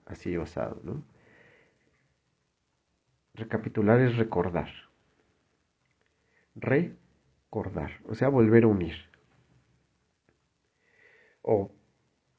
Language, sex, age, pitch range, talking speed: Spanish, male, 50-69, 95-120 Hz, 65 wpm